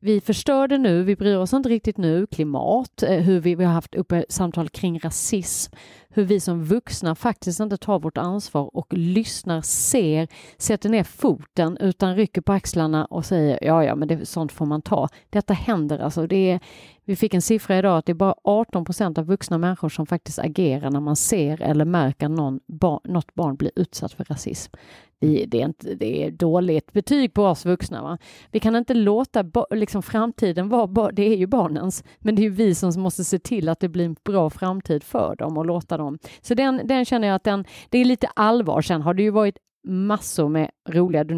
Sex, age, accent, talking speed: female, 40-59, native, 215 wpm